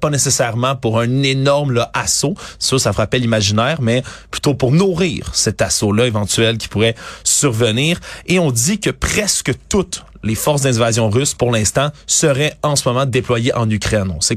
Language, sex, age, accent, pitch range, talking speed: French, male, 30-49, Canadian, 110-135 Hz, 175 wpm